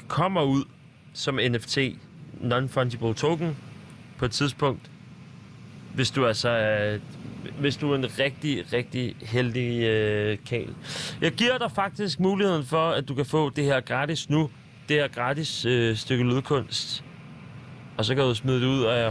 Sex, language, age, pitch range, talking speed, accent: male, Danish, 30-49, 120-150 Hz, 155 wpm, native